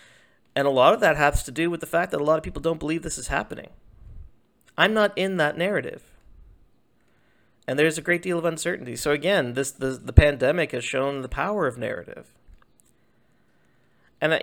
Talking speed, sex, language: 195 wpm, male, English